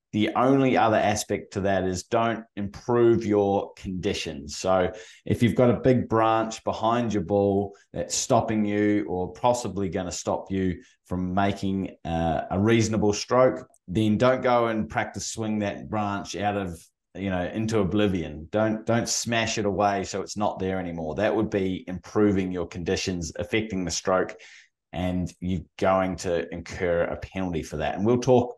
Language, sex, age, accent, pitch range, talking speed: English, male, 20-39, Australian, 90-110 Hz, 170 wpm